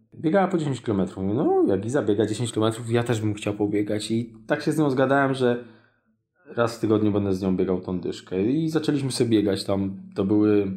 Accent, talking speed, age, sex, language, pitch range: native, 210 wpm, 20-39, male, Polish, 105-130 Hz